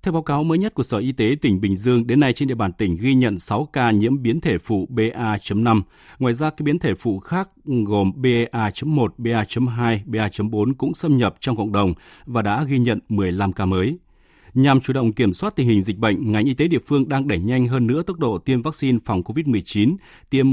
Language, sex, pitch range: Vietnamese, male, 105-140 Hz